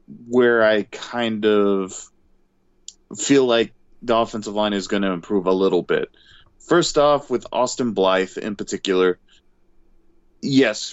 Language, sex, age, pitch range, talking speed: English, male, 20-39, 100-120 Hz, 130 wpm